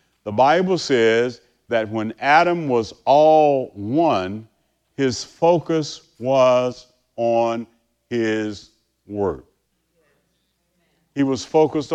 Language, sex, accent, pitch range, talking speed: English, male, American, 110-160 Hz, 90 wpm